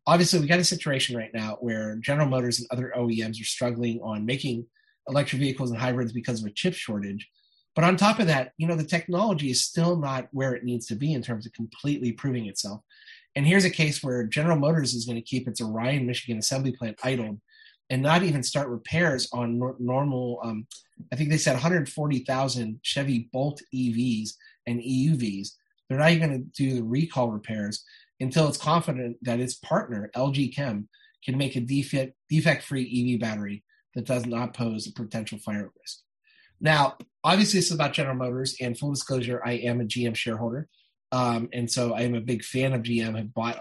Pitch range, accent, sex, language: 120-145 Hz, American, male, English